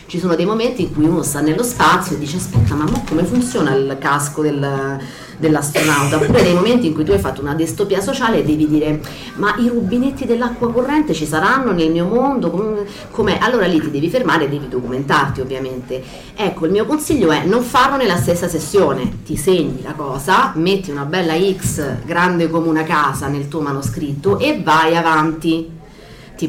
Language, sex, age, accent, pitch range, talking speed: Italian, female, 40-59, native, 145-185 Hz, 185 wpm